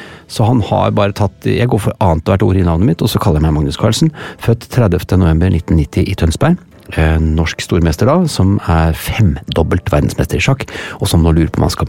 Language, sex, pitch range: English, male, 85-110 Hz